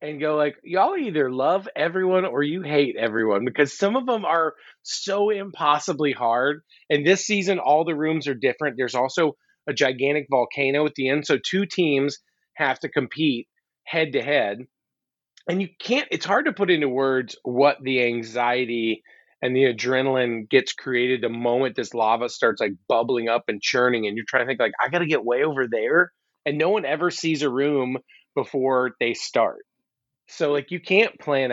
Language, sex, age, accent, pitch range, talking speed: English, male, 30-49, American, 130-170 Hz, 190 wpm